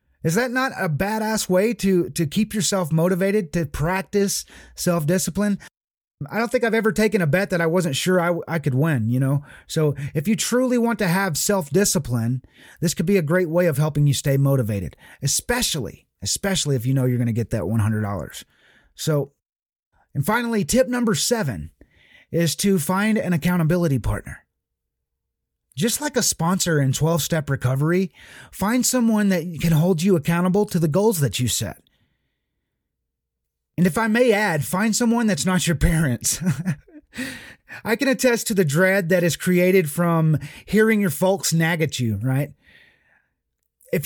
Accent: American